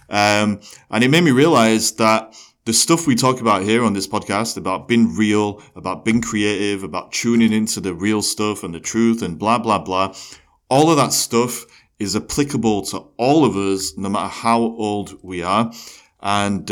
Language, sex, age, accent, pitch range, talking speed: English, male, 30-49, British, 95-115 Hz, 185 wpm